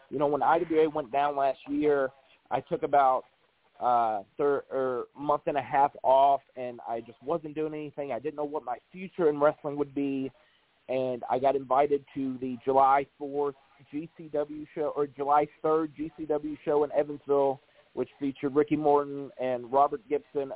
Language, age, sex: English, 30-49, male